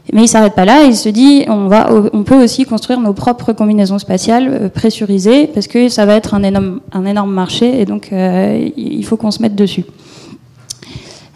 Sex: female